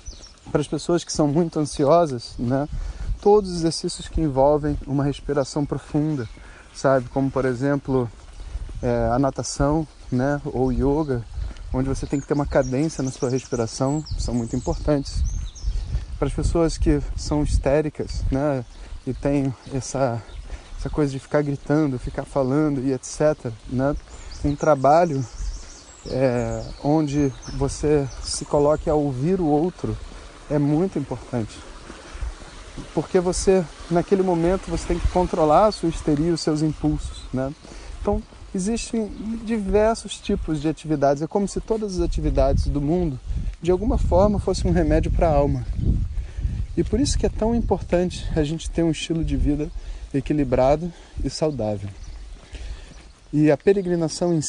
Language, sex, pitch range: Portuguese, male, 125-160 Hz